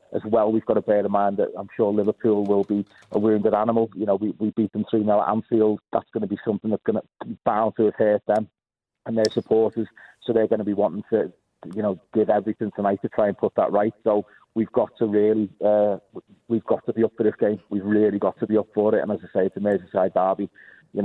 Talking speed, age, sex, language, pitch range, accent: 260 wpm, 40-59, male, English, 100-115 Hz, British